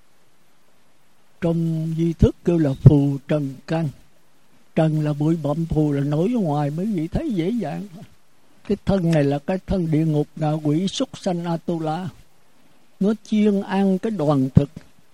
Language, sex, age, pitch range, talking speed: Vietnamese, male, 60-79, 150-190 Hz, 160 wpm